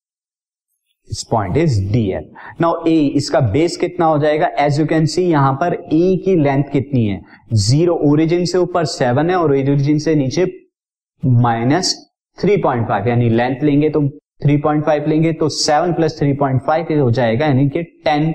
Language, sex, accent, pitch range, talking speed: Hindi, male, native, 120-155 Hz, 145 wpm